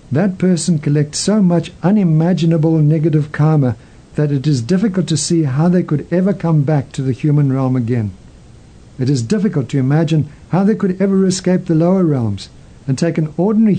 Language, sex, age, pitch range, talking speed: English, male, 60-79, 135-165 Hz, 185 wpm